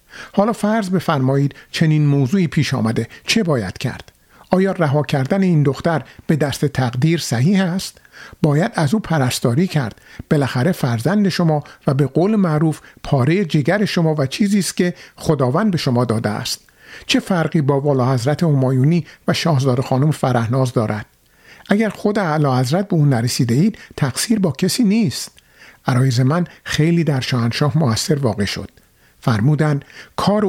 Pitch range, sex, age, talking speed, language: 130-170 Hz, male, 50-69, 150 wpm, Persian